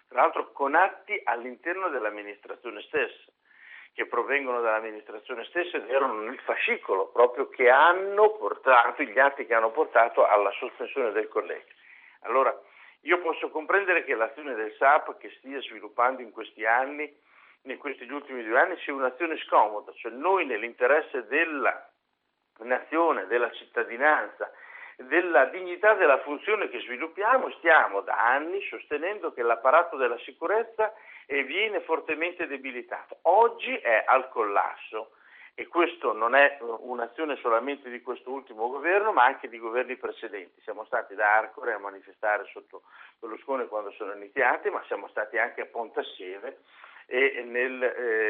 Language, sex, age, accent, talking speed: Italian, male, 60-79, native, 140 wpm